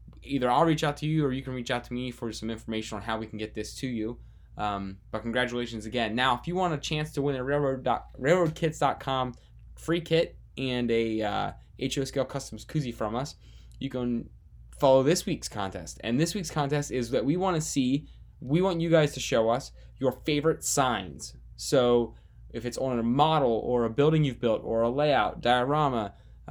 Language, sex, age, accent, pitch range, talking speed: English, male, 20-39, American, 110-145 Hz, 205 wpm